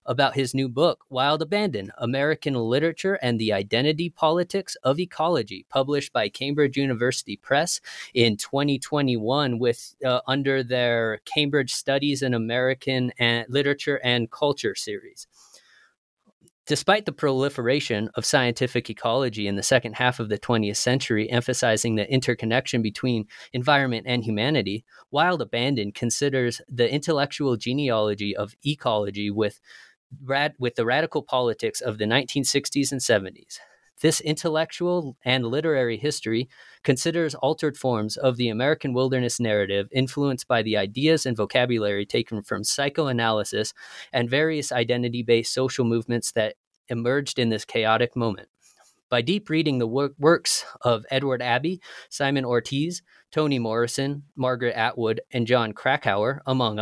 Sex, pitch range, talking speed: male, 115-145 Hz, 130 wpm